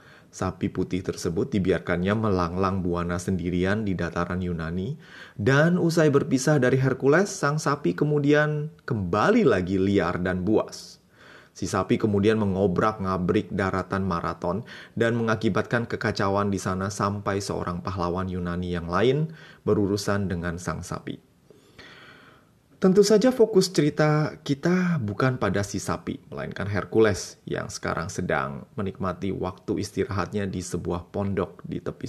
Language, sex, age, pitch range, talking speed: Indonesian, male, 30-49, 95-135 Hz, 125 wpm